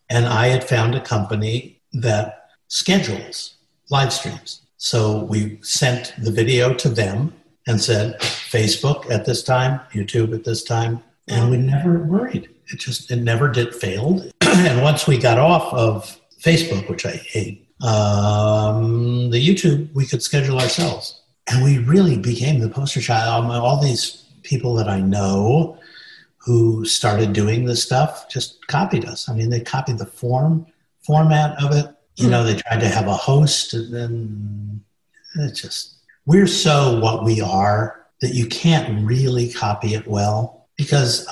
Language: English